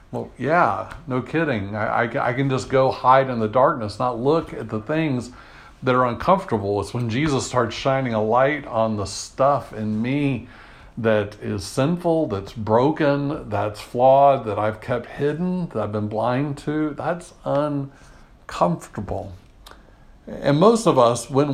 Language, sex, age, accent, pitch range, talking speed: English, male, 60-79, American, 115-150 Hz, 155 wpm